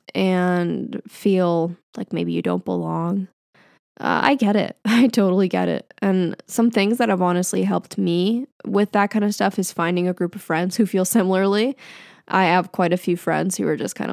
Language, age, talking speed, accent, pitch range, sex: English, 10-29, 200 wpm, American, 175-220 Hz, female